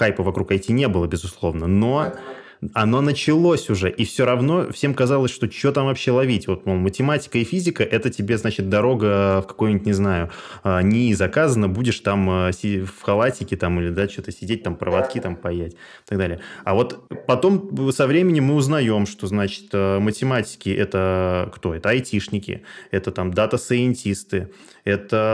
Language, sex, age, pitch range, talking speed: Russian, male, 20-39, 95-120 Hz, 160 wpm